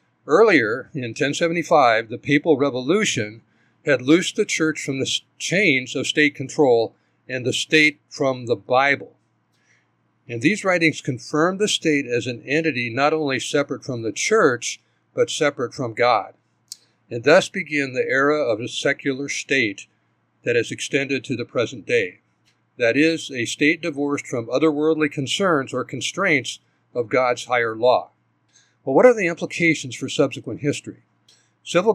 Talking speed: 155 wpm